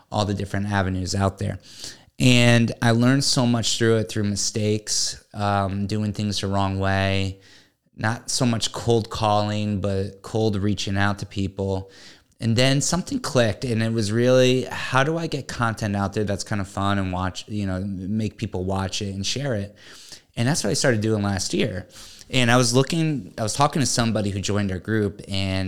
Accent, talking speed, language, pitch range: American, 195 wpm, English, 95-115 Hz